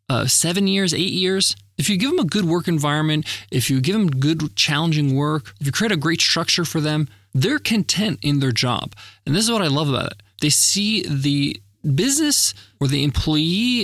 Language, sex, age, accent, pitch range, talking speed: English, male, 20-39, American, 125-170 Hz, 210 wpm